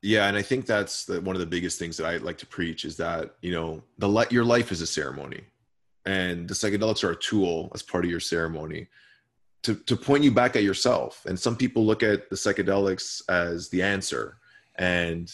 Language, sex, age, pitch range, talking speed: English, male, 20-39, 90-110 Hz, 215 wpm